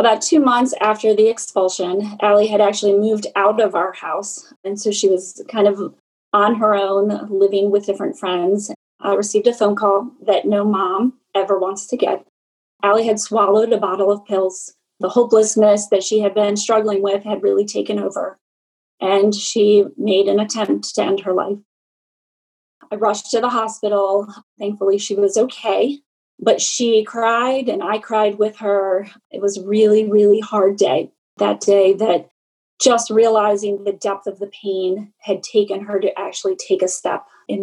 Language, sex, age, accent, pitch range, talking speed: English, female, 30-49, American, 200-225 Hz, 175 wpm